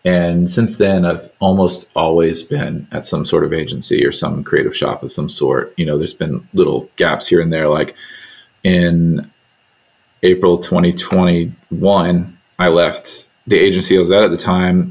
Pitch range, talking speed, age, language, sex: 85-100 Hz, 170 wpm, 30-49, English, male